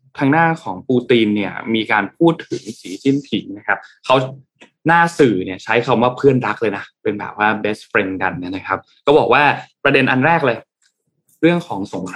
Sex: male